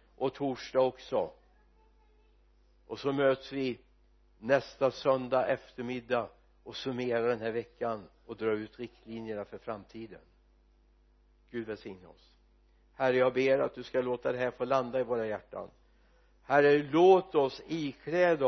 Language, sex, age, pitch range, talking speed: Swedish, male, 60-79, 115-165 Hz, 135 wpm